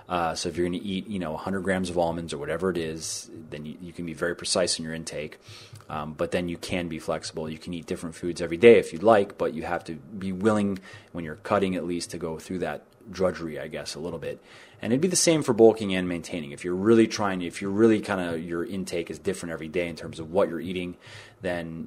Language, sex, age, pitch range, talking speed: English, male, 30-49, 85-100 Hz, 265 wpm